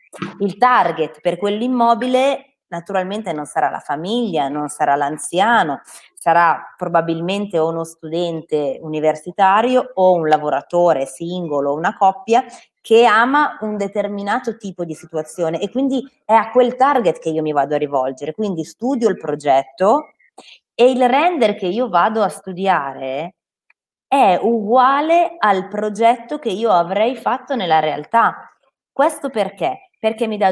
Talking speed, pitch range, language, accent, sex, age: 140 wpm, 160-225 Hz, Italian, native, female, 20-39